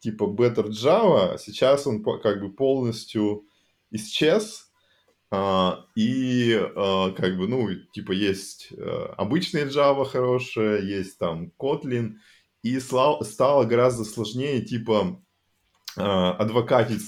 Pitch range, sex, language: 95-120 Hz, male, Russian